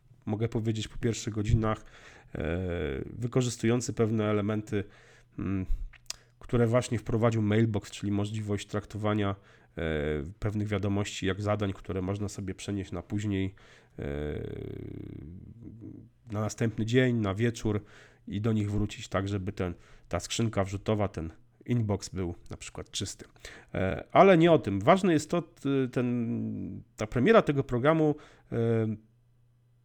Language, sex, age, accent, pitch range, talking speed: Polish, male, 40-59, native, 105-125 Hz, 115 wpm